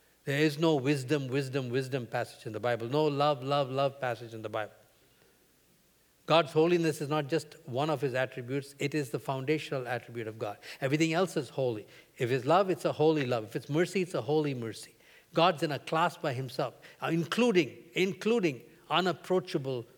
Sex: male